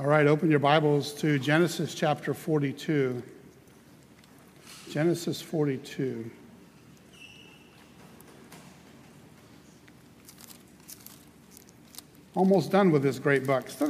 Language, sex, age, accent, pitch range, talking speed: English, male, 50-69, American, 150-185 Hz, 80 wpm